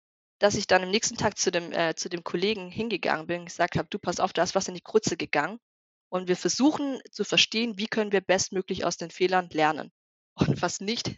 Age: 20-39